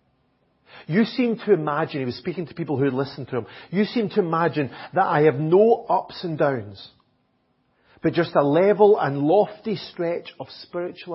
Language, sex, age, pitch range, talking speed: English, male, 40-59, 130-175 Hz, 180 wpm